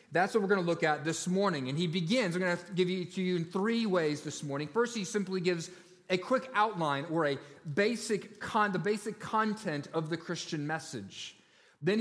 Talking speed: 225 wpm